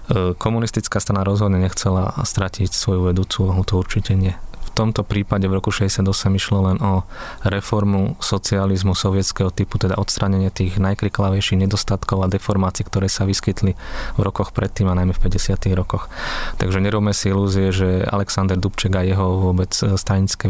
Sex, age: male, 20-39